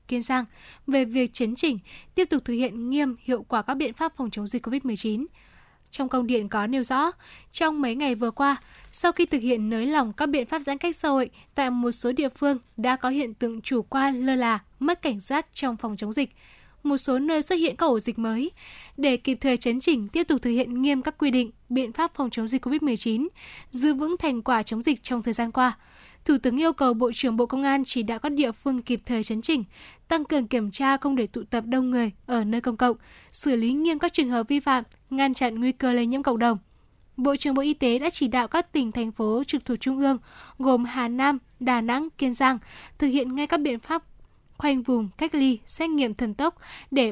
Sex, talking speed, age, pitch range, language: female, 240 wpm, 10-29, 240-290 Hz, Vietnamese